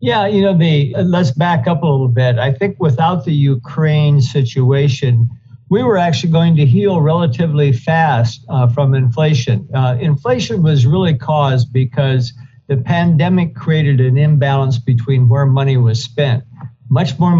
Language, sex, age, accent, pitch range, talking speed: English, male, 60-79, American, 130-155 Hz, 155 wpm